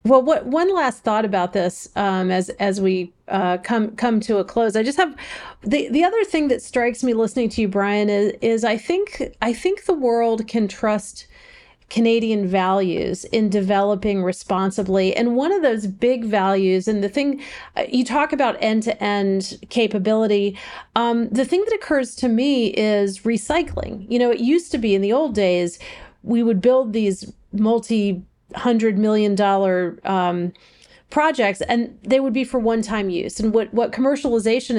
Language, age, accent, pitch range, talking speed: English, 40-59, American, 200-250 Hz, 175 wpm